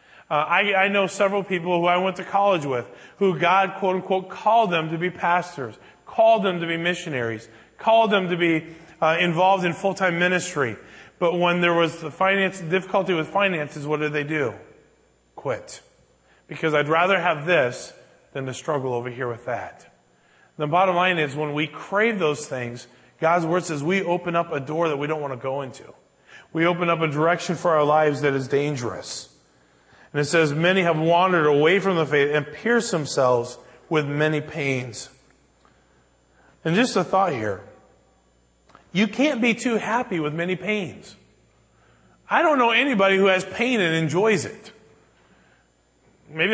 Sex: male